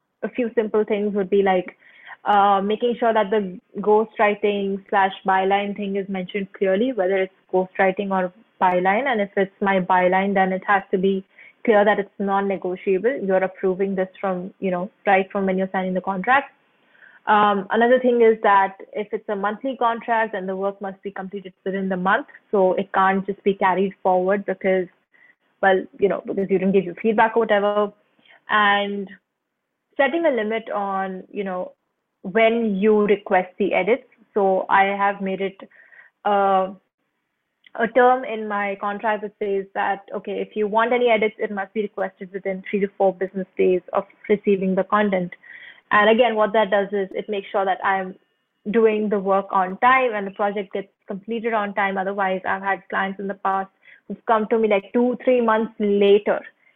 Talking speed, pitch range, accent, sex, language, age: 185 wpm, 190-215 Hz, Indian, female, English, 20-39